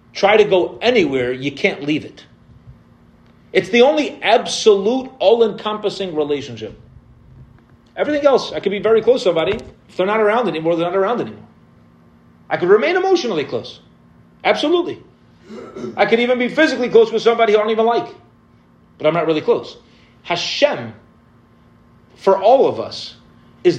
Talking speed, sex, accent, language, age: 155 wpm, male, American, English, 40-59